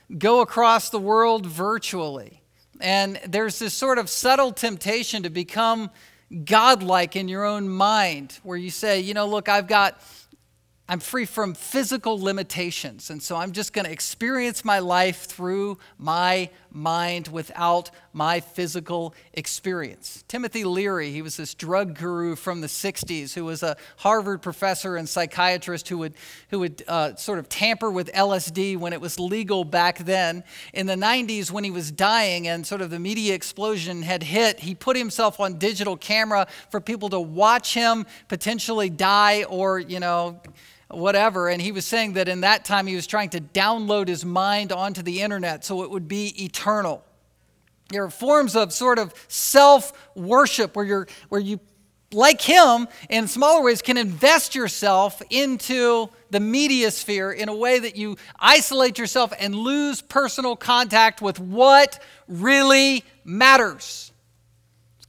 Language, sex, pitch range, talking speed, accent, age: English, male, 175-220 Hz, 160 wpm, American, 50-69